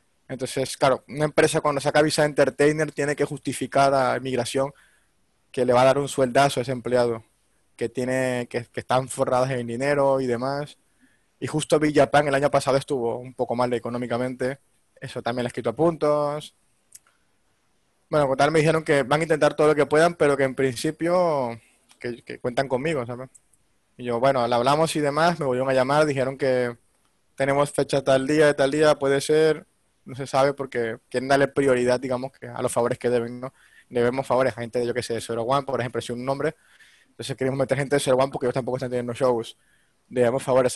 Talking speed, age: 205 wpm, 20-39